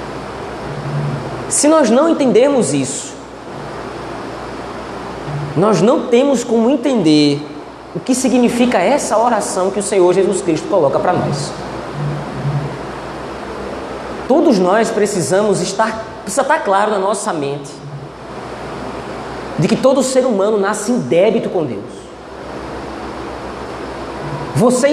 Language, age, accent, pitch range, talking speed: Portuguese, 20-39, Brazilian, 205-300 Hz, 105 wpm